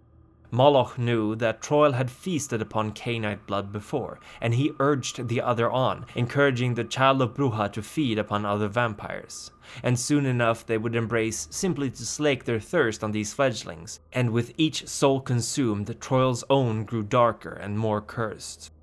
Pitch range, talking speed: 110-140 Hz, 165 wpm